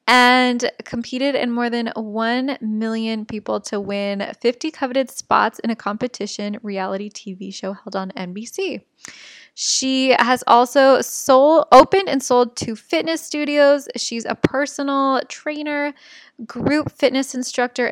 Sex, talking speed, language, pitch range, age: female, 130 wpm, English, 210-260 Hz, 10-29